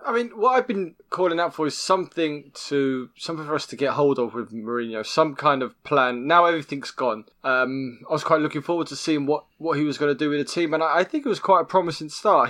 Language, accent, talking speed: English, British, 265 wpm